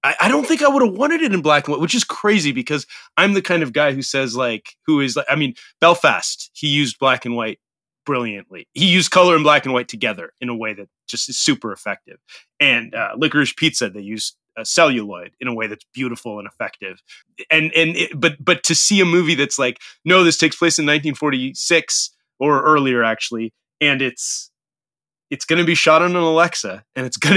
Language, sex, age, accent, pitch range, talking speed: English, male, 30-49, American, 125-165 Hz, 215 wpm